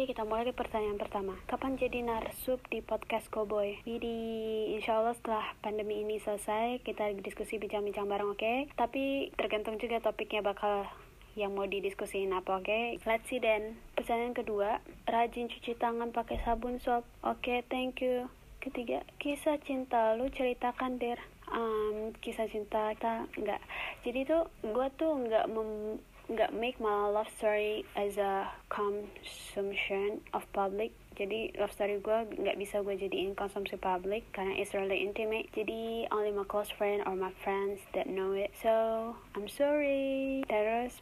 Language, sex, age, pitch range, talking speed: English, female, 20-39, 205-240 Hz, 155 wpm